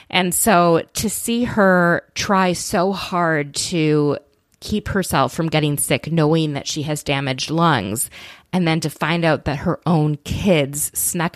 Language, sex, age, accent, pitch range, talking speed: English, female, 20-39, American, 145-195 Hz, 160 wpm